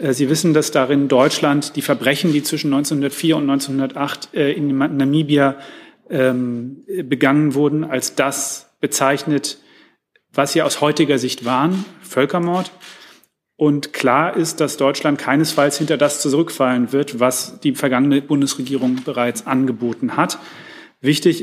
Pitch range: 135-155 Hz